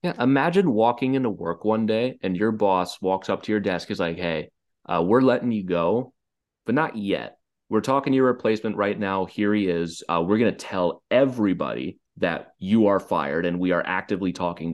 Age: 30-49